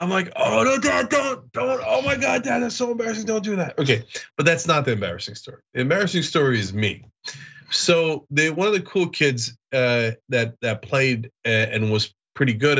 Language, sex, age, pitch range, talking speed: English, male, 30-49, 110-145 Hz, 210 wpm